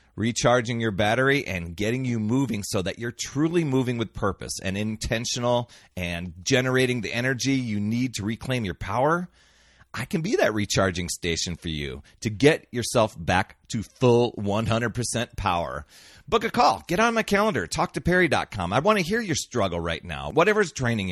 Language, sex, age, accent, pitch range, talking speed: English, male, 30-49, American, 95-135 Hz, 175 wpm